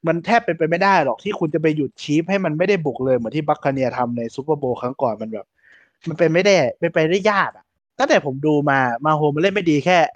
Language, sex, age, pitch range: Thai, male, 20-39, 130-175 Hz